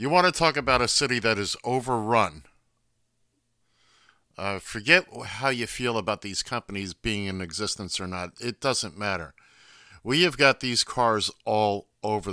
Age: 50-69